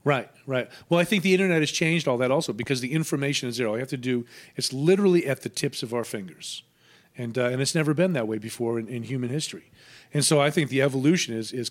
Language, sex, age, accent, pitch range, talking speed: English, male, 40-59, American, 115-145 Hz, 255 wpm